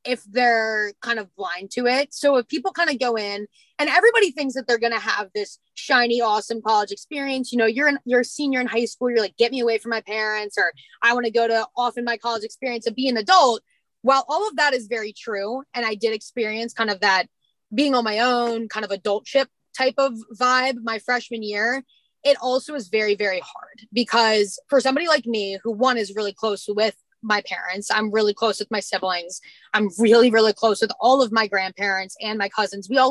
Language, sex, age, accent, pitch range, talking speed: English, female, 20-39, American, 215-255 Hz, 225 wpm